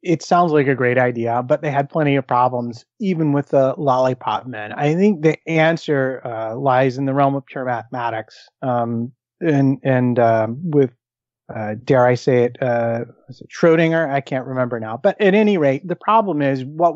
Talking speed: 190 wpm